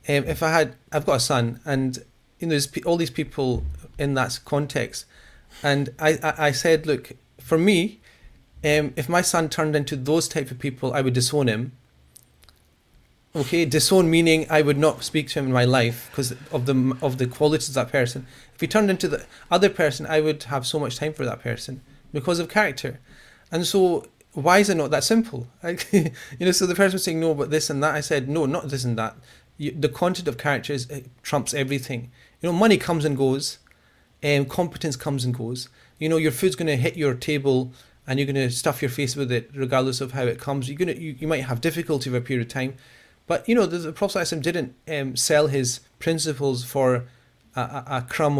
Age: 30-49